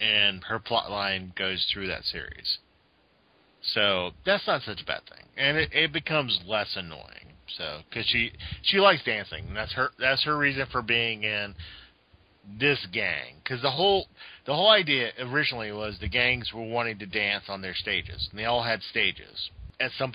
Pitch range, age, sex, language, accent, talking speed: 95-120 Hz, 40-59, male, English, American, 185 wpm